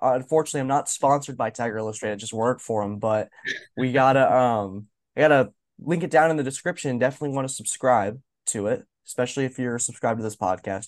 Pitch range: 115-140 Hz